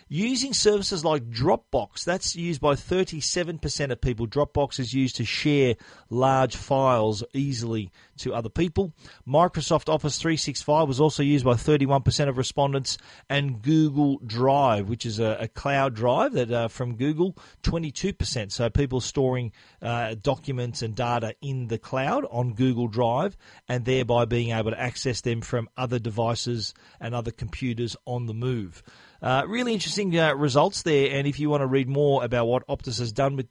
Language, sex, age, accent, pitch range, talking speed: English, male, 40-59, Australian, 115-145 Hz, 165 wpm